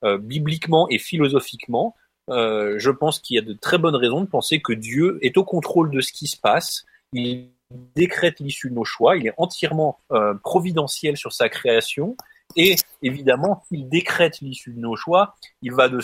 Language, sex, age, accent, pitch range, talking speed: French, male, 30-49, French, 125-170 Hz, 190 wpm